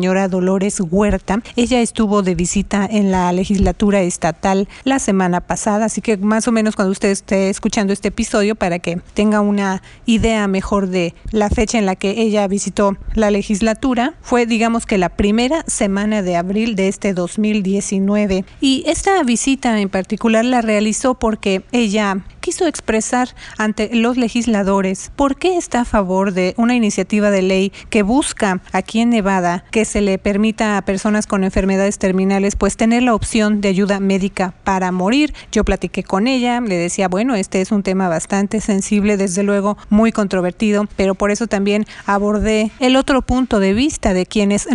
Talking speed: 175 wpm